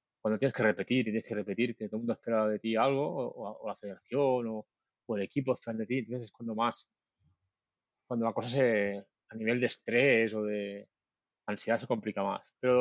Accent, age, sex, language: Spanish, 30-49, male, Spanish